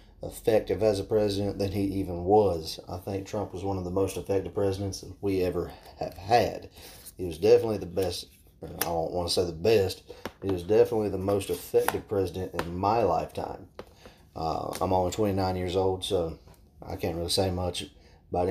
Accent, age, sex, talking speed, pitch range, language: American, 30-49, male, 185 wpm, 85-100 Hz, English